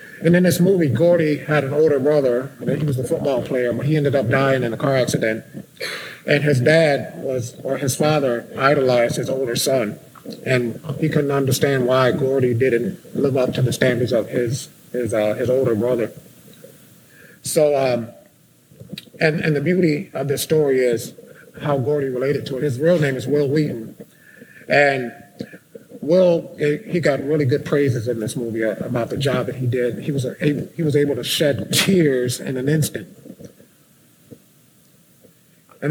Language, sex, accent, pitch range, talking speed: English, male, American, 130-160 Hz, 170 wpm